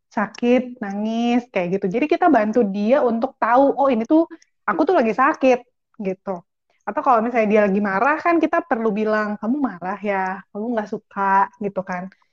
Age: 20-39